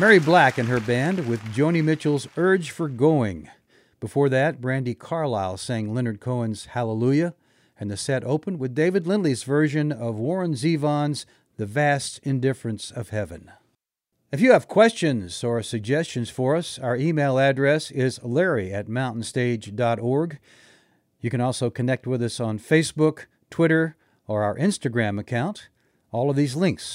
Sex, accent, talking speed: male, American, 150 wpm